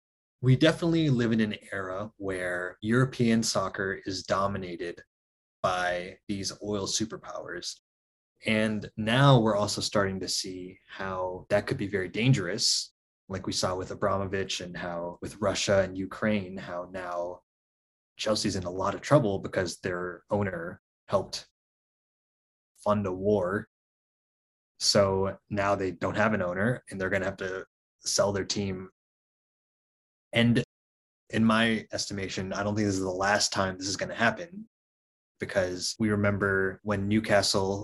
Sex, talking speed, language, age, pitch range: male, 145 wpm, English, 20-39, 90-110 Hz